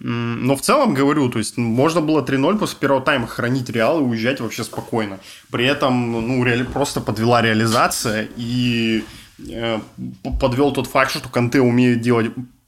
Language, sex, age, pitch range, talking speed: Russian, male, 20-39, 110-130 Hz, 160 wpm